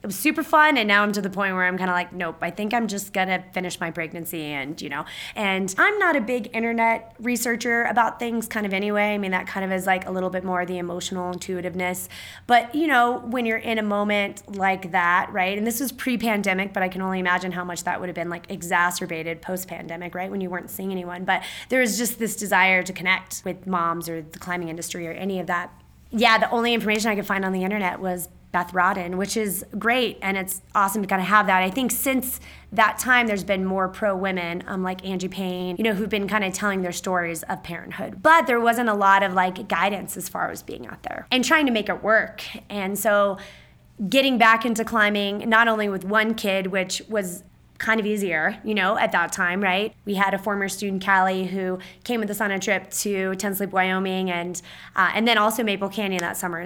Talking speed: 235 wpm